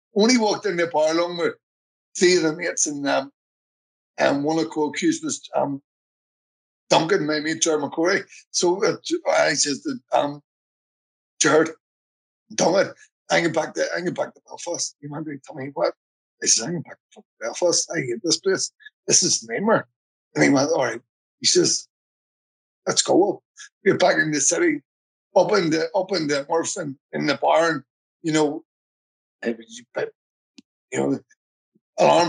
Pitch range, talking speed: 145-185 Hz, 175 wpm